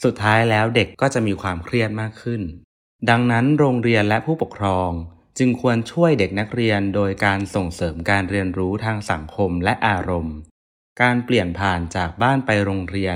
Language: Thai